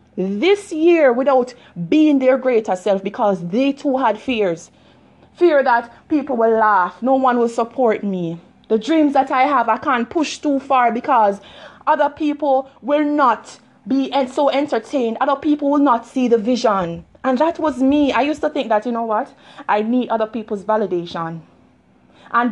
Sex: female